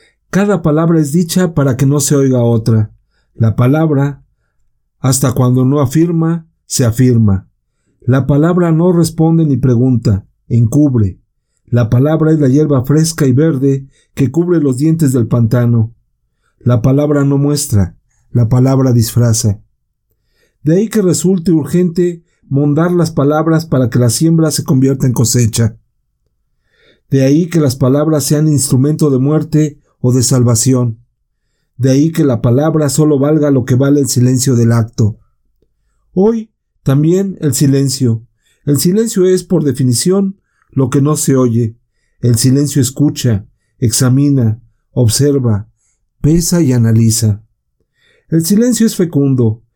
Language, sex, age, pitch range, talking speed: Spanish, male, 50-69, 120-155 Hz, 135 wpm